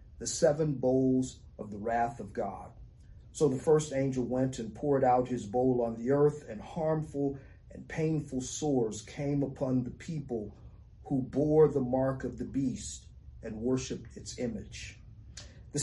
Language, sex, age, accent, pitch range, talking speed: English, male, 40-59, American, 110-145 Hz, 160 wpm